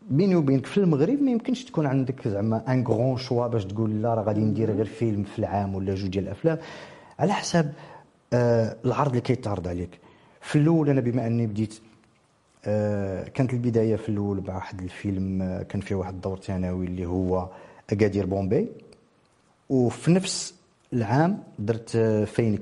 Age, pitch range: 50-69, 100-130 Hz